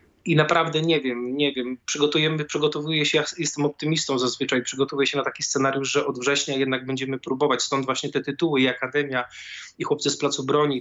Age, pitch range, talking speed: 20-39, 135-145 Hz, 195 wpm